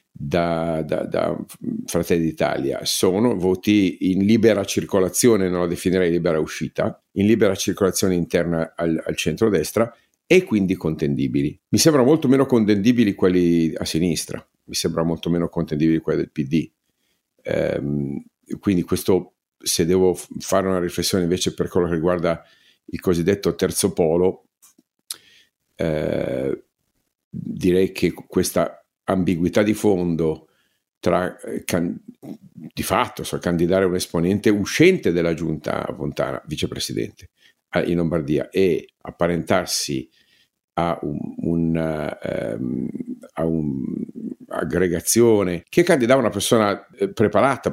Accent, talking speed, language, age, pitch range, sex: native, 115 wpm, Italian, 50-69, 80-100 Hz, male